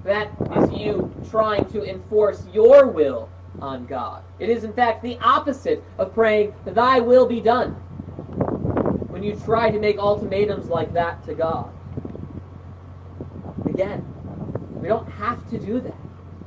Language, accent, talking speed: English, American, 140 wpm